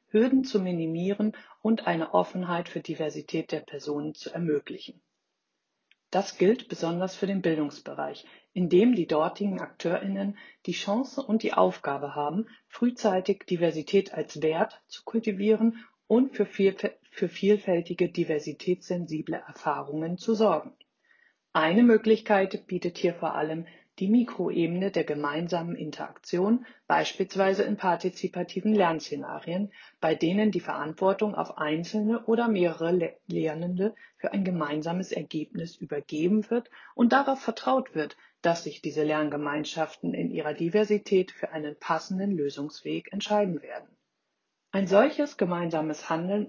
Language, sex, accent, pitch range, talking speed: German, female, German, 160-210 Hz, 120 wpm